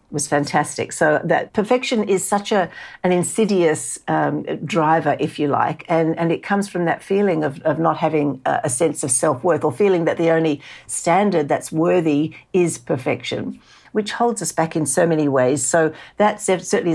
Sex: female